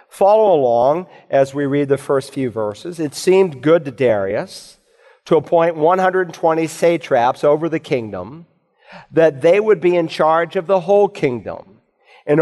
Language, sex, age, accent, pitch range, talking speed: English, male, 50-69, American, 140-175 Hz, 155 wpm